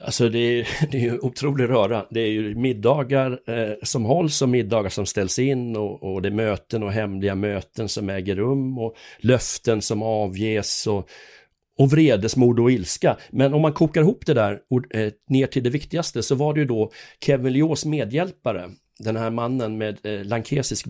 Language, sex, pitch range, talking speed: Swedish, male, 110-140 Hz, 190 wpm